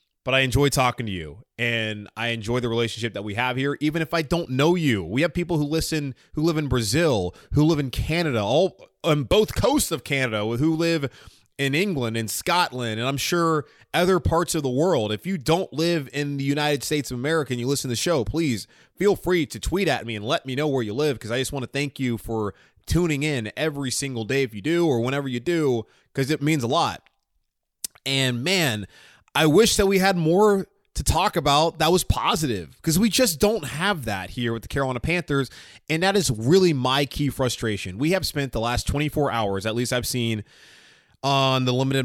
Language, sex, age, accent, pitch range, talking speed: English, male, 20-39, American, 115-160 Hz, 220 wpm